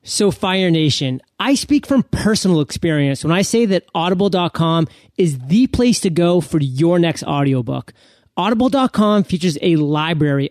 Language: English